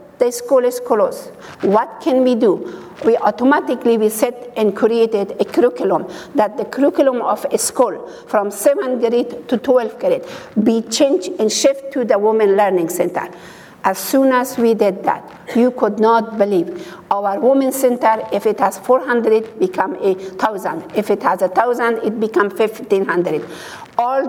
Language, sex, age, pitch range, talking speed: English, female, 60-79, 210-255 Hz, 170 wpm